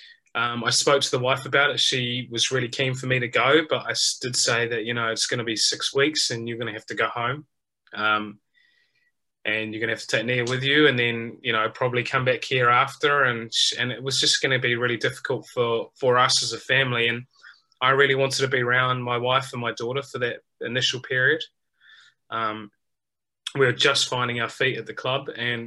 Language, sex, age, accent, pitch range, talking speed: English, male, 20-39, Australian, 115-135 Hz, 235 wpm